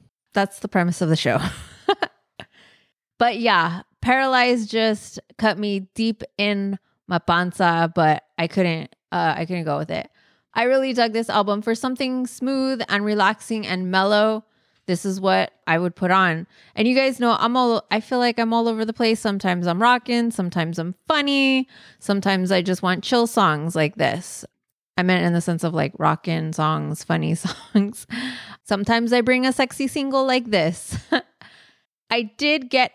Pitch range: 180-230 Hz